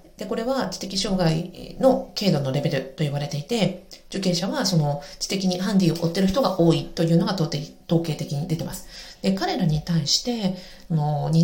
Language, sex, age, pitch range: Japanese, female, 40-59, 155-185 Hz